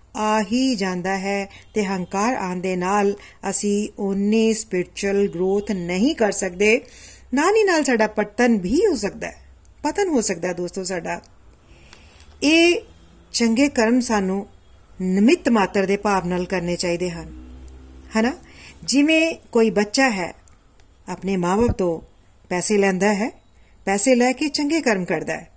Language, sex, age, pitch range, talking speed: Punjabi, female, 40-59, 185-255 Hz, 120 wpm